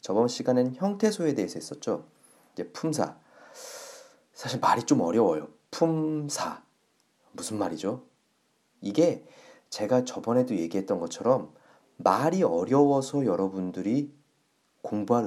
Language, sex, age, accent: Korean, male, 30-49, native